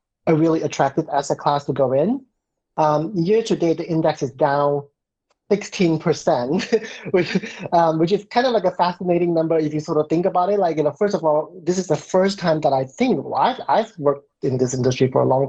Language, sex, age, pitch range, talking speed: English, male, 30-49, 150-185 Hz, 230 wpm